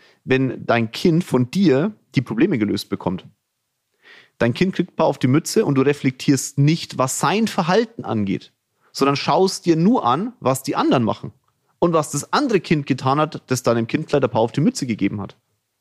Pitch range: 125-180 Hz